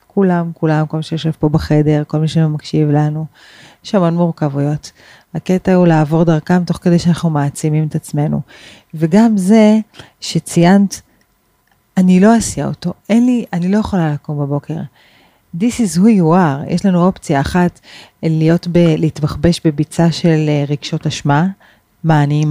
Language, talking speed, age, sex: Hebrew, 140 wpm, 30-49, female